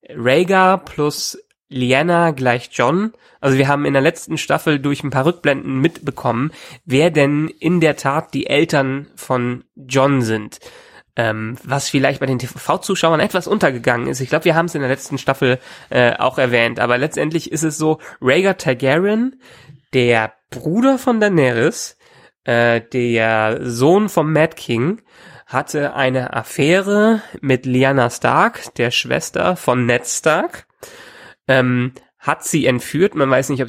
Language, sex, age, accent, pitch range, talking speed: German, male, 20-39, German, 130-165 Hz, 150 wpm